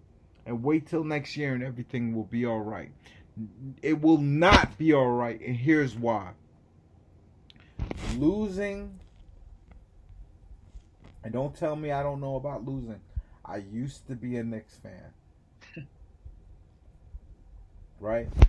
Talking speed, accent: 125 wpm, American